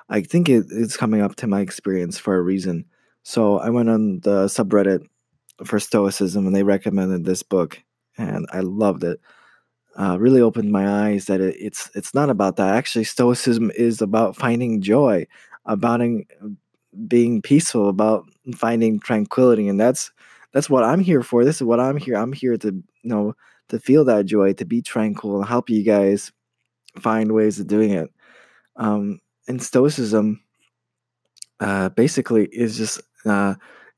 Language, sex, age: English, male, 20-39